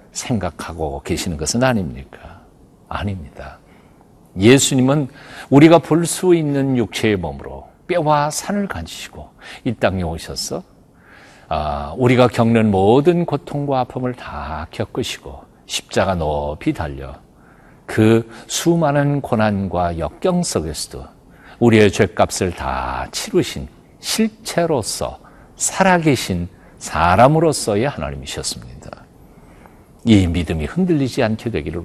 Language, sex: Korean, male